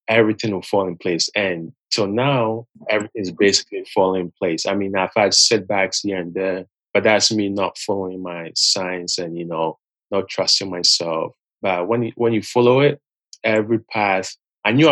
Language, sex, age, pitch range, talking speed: English, male, 20-39, 90-110 Hz, 180 wpm